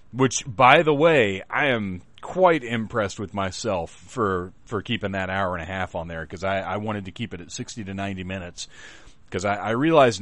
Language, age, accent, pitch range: English, 30-49, American, 100-125 Hz